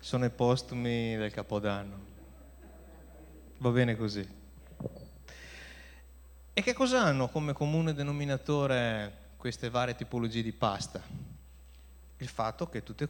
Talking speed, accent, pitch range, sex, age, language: 110 wpm, native, 100-160 Hz, male, 30-49, Italian